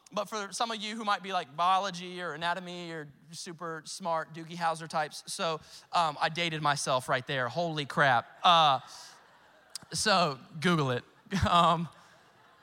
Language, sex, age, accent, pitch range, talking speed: English, male, 20-39, American, 190-275 Hz, 150 wpm